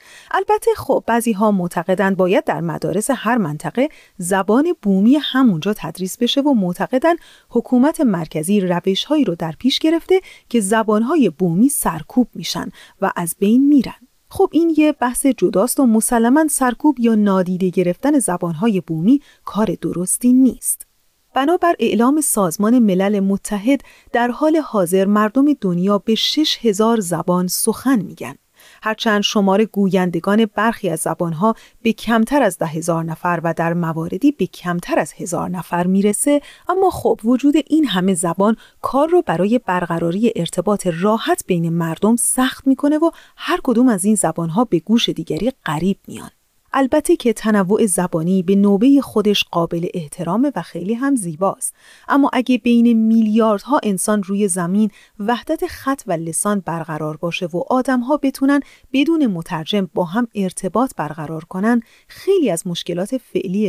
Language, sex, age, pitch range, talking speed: Persian, female, 30-49, 185-260 Hz, 145 wpm